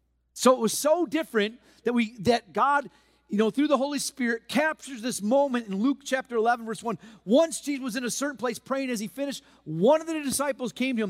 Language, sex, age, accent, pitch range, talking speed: English, male, 40-59, American, 170-260 Hz, 225 wpm